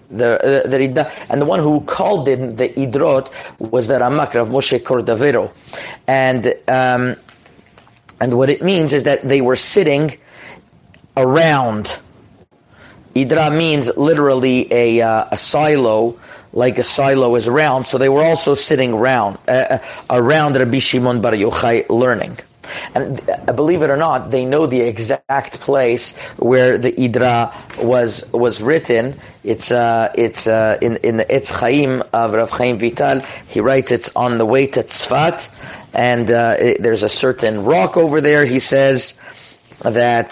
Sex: male